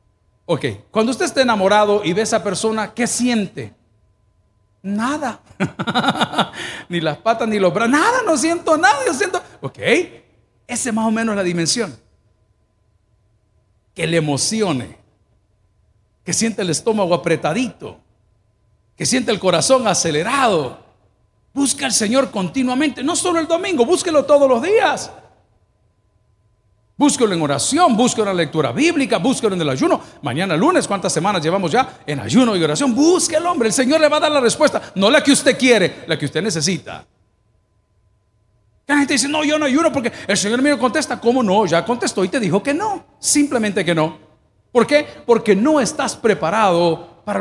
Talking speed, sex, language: 165 wpm, male, Spanish